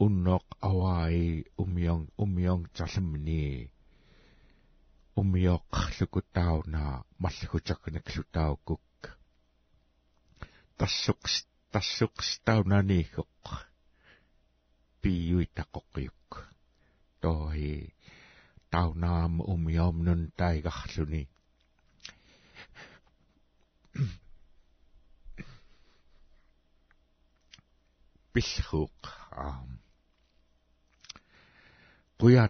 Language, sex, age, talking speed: English, male, 60-79, 35 wpm